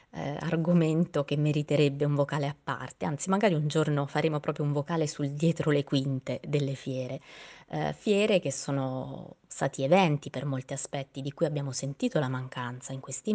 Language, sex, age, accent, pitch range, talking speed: Italian, female, 20-39, native, 140-170 Hz, 175 wpm